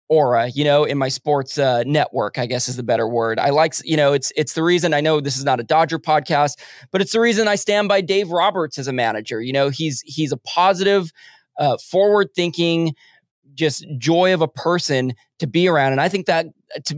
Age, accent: 20-39, American